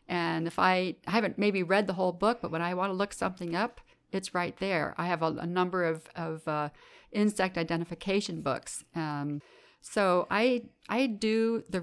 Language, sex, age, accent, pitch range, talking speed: English, female, 50-69, American, 160-185 Hz, 195 wpm